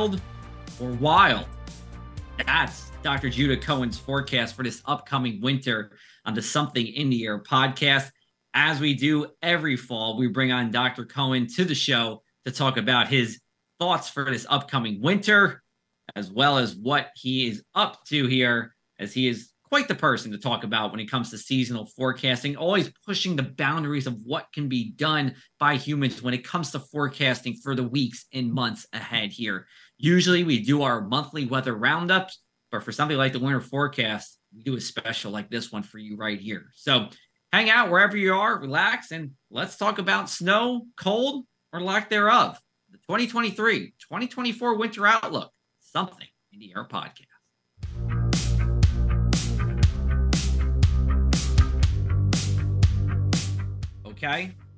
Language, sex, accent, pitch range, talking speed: English, male, American, 105-150 Hz, 150 wpm